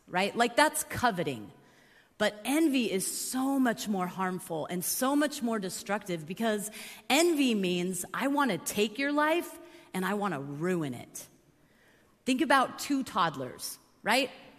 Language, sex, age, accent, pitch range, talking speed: English, female, 30-49, American, 165-235 Hz, 150 wpm